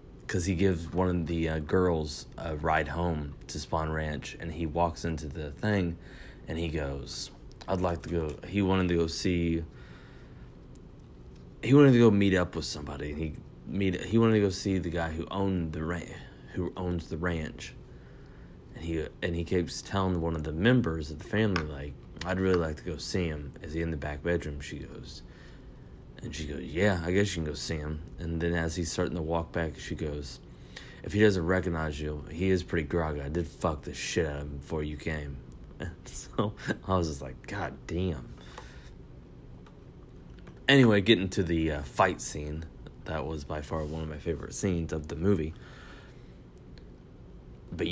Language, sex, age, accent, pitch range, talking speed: English, male, 30-49, American, 75-90 Hz, 195 wpm